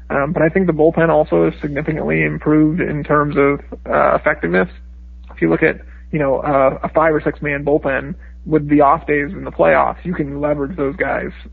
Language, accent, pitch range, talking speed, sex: English, American, 135-155 Hz, 210 wpm, male